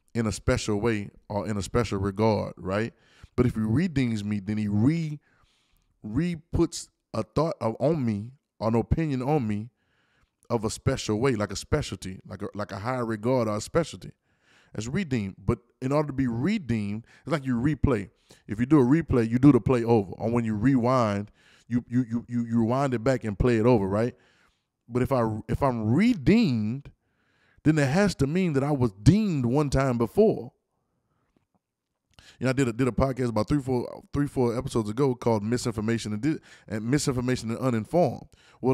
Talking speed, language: 190 wpm, English